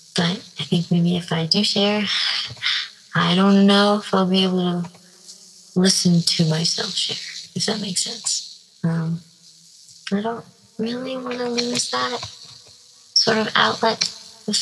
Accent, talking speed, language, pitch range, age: American, 145 wpm, English, 170-205 Hz, 20-39